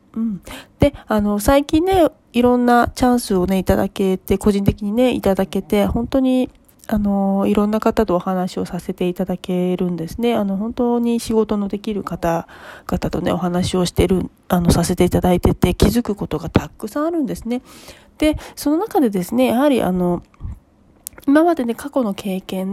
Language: Japanese